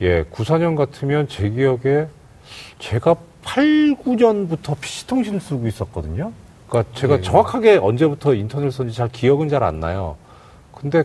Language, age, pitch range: Korean, 40-59, 100-165 Hz